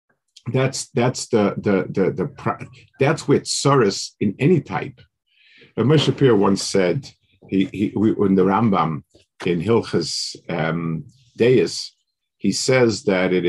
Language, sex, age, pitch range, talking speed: English, male, 50-69, 95-135 Hz, 125 wpm